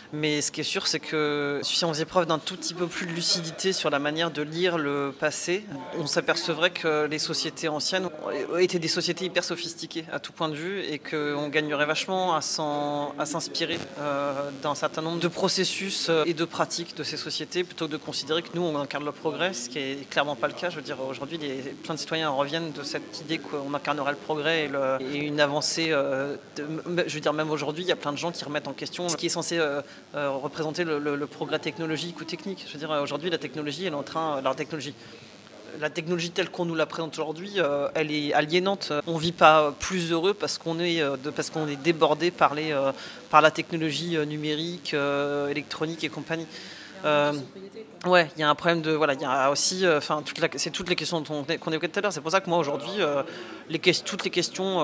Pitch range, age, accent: 145-170 Hz, 30-49, French